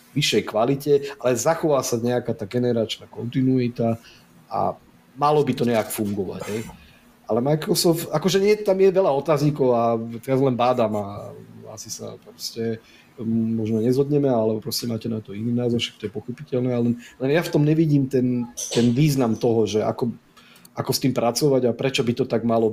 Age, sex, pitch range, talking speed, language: 40-59, male, 115-135 Hz, 180 wpm, Slovak